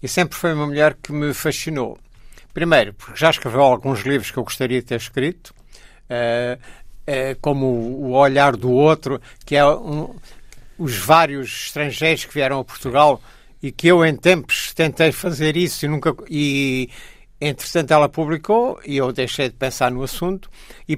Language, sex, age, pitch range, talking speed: Portuguese, male, 60-79, 130-170 Hz, 165 wpm